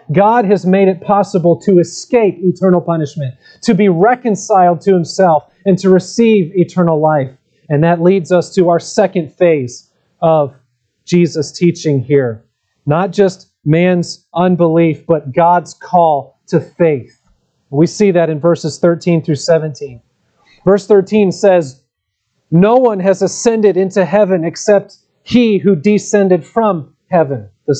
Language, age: English, 30-49